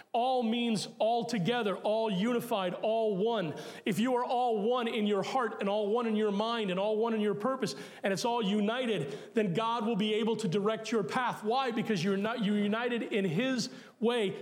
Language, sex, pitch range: English, male, 185-230 Hz